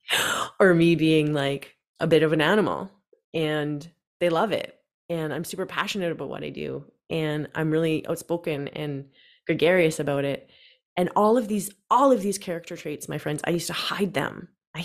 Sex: female